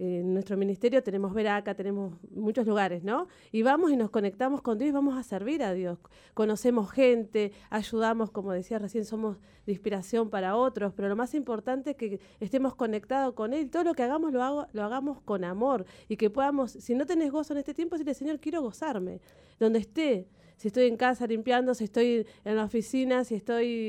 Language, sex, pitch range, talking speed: Spanish, female, 205-255 Hz, 205 wpm